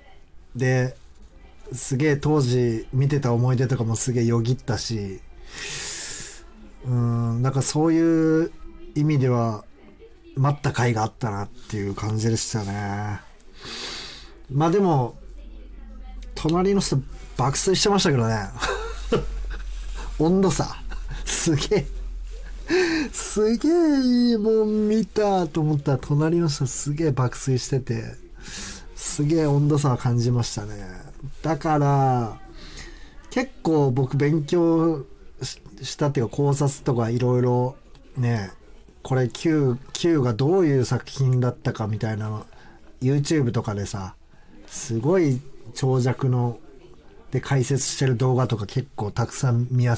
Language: Japanese